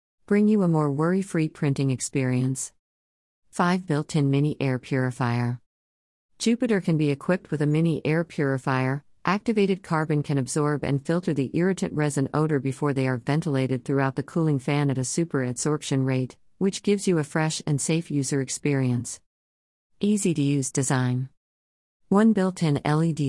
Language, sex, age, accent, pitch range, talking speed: English, female, 50-69, American, 130-170 Hz, 150 wpm